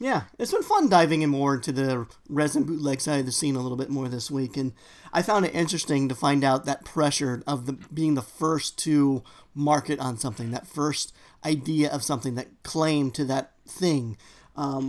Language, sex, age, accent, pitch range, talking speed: English, male, 40-59, American, 140-165 Hz, 205 wpm